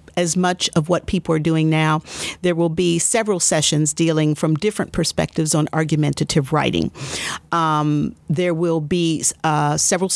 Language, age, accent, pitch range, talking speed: English, 50-69, American, 155-180 Hz, 155 wpm